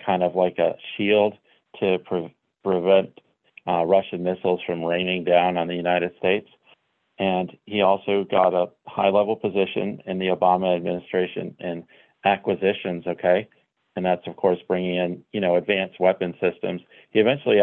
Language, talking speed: English, 145 wpm